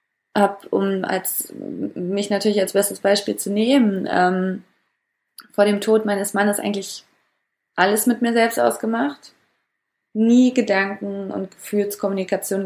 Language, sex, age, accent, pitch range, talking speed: German, female, 20-39, German, 190-225 Hz, 125 wpm